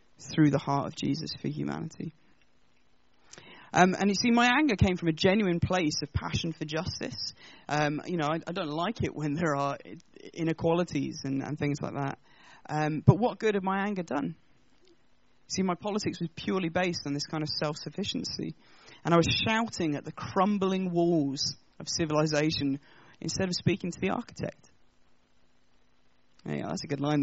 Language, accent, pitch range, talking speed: English, British, 145-190 Hz, 170 wpm